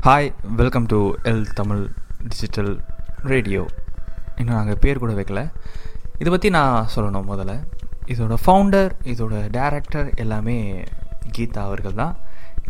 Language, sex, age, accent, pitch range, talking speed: Tamil, male, 20-39, native, 100-130 Hz, 120 wpm